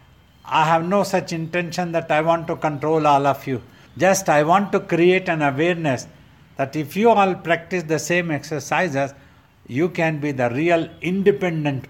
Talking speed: 170 wpm